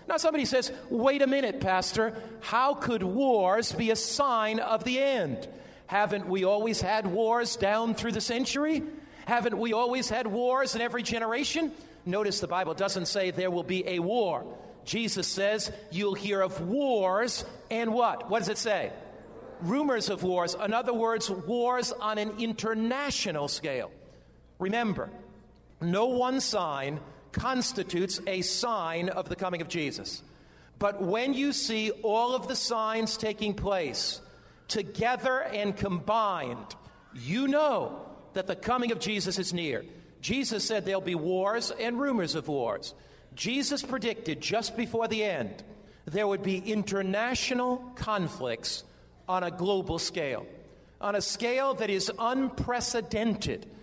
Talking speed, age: 145 wpm, 50-69